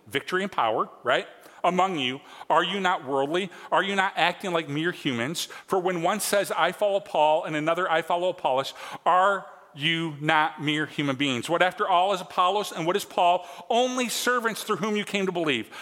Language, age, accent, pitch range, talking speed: English, 40-59, American, 160-200 Hz, 195 wpm